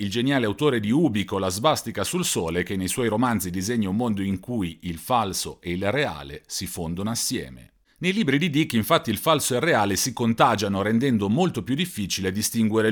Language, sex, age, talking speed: Italian, male, 40-59, 200 wpm